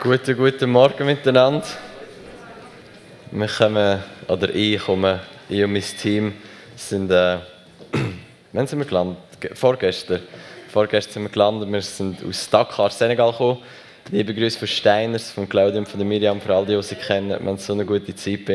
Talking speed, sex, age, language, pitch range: 170 wpm, male, 20-39, German, 100-125 Hz